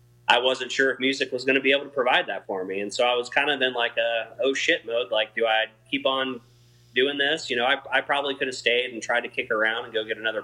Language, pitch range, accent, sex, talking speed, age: English, 110-130 Hz, American, male, 295 wpm, 20-39